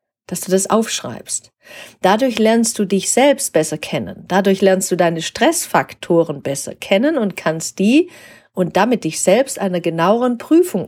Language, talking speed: German, 155 wpm